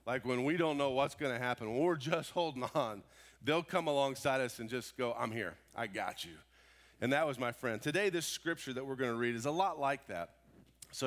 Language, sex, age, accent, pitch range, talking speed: English, male, 40-59, American, 115-150 Hz, 230 wpm